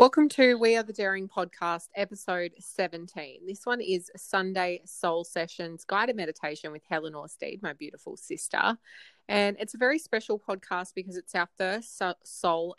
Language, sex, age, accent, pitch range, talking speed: English, female, 20-39, Australian, 160-190 Hz, 160 wpm